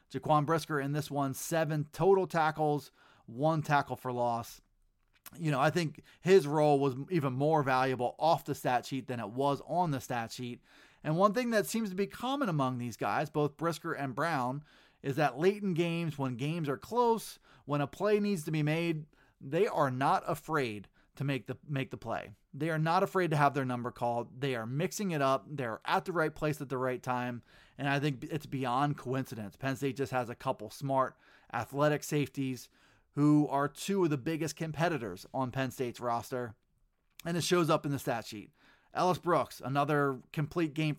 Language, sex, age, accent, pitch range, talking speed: English, male, 30-49, American, 130-165 Hz, 200 wpm